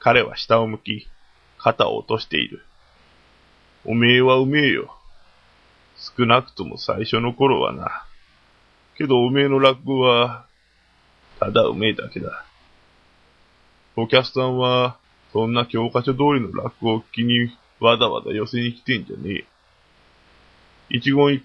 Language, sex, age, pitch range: Japanese, male, 20-39, 105-130 Hz